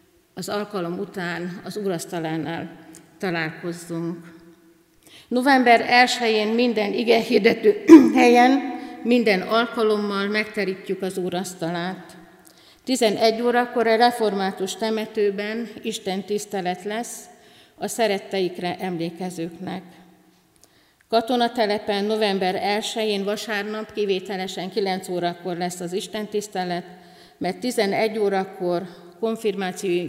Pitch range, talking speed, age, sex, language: 175-215 Hz, 90 wpm, 50-69, female, Hungarian